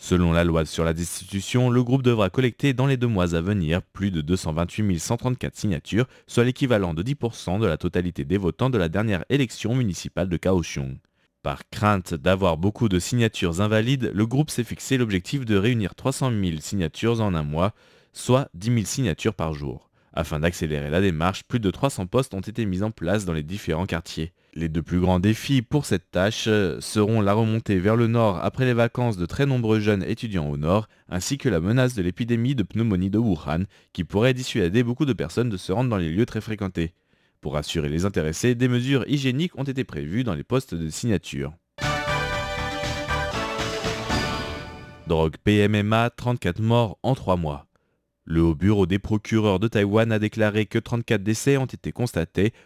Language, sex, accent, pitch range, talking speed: French, male, French, 90-120 Hz, 190 wpm